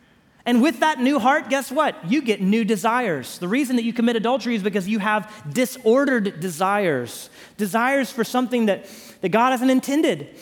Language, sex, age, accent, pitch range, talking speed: English, male, 30-49, American, 195-270 Hz, 180 wpm